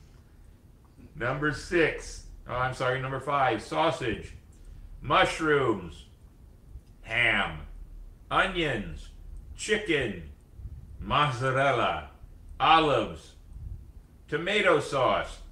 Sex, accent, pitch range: male, American, 80-135 Hz